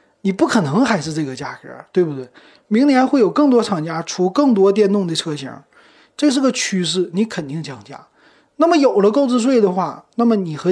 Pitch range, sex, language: 155-225 Hz, male, Chinese